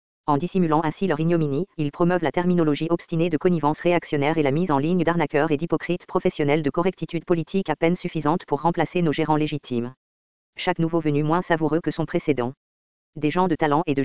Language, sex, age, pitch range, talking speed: English, female, 40-59, 145-170 Hz, 200 wpm